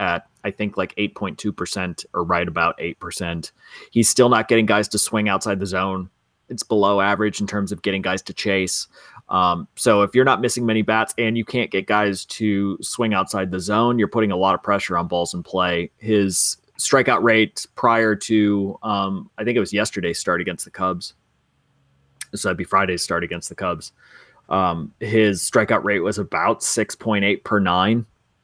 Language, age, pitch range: English, 30-49, 100-125 Hz